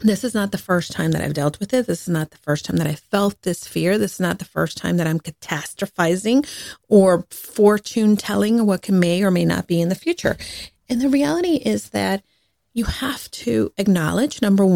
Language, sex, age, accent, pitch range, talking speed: English, female, 40-59, American, 180-235 Hz, 220 wpm